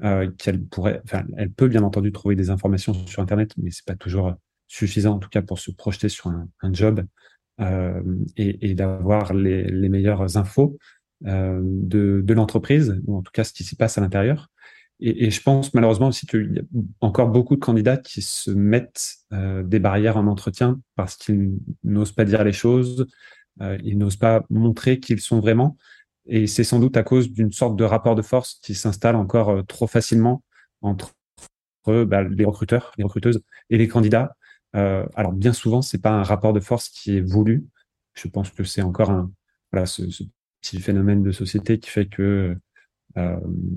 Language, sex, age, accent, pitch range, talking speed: French, male, 30-49, French, 95-115 Hz, 200 wpm